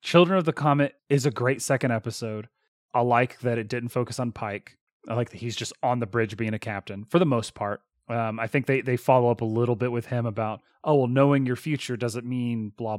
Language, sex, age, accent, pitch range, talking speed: English, male, 30-49, American, 110-130 Hz, 245 wpm